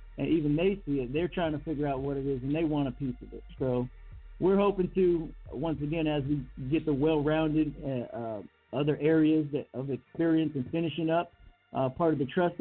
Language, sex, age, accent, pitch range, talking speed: English, male, 50-69, American, 130-165 Hz, 215 wpm